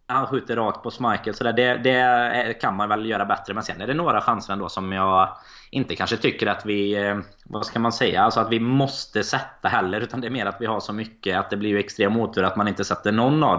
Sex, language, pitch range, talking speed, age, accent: male, Swedish, 100-120 Hz, 260 wpm, 20-39, native